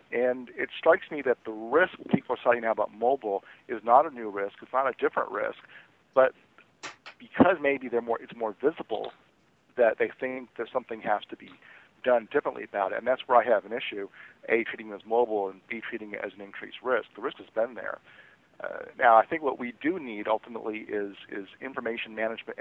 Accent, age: American, 50-69